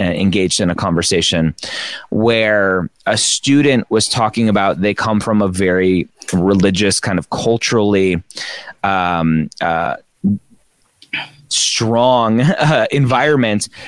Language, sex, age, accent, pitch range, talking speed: English, male, 30-49, American, 95-115 Hz, 105 wpm